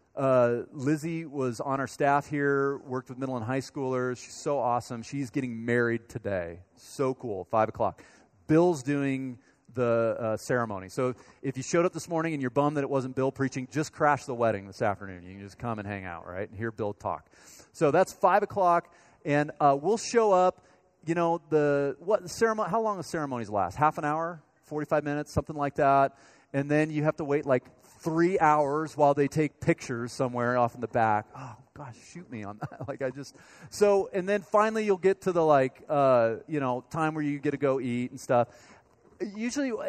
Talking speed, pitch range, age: 210 wpm, 125-170 Hz, 30-49